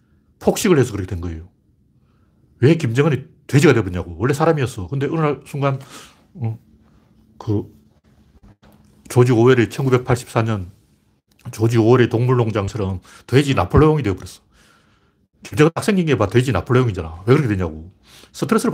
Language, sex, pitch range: Korean, male, 100-140 Hz